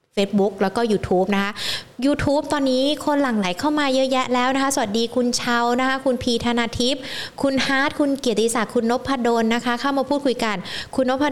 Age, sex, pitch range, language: 20-39, female, 210-265 Hz, Thai